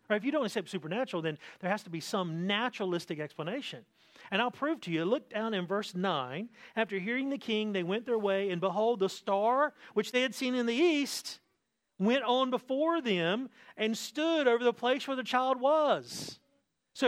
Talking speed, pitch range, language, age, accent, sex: 195 wpm, 190-255 Hz, English, 40-59, American, male